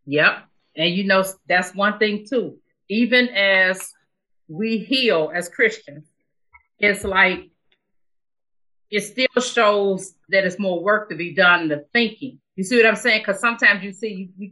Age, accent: 40-59, American